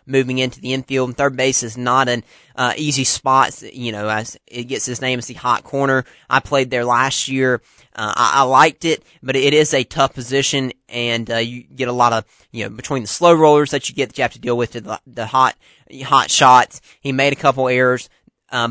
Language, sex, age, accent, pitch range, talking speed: English, male, 30-49, American, 115-135 Hz, 235 wpm